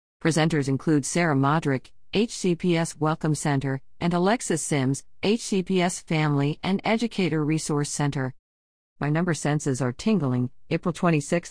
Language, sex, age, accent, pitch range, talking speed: English, female, 50-69, American, 140-185 Hz, 120 wpm